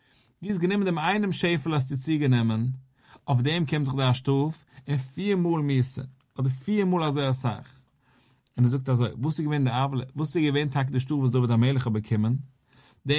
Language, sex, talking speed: English, male, 180 wpm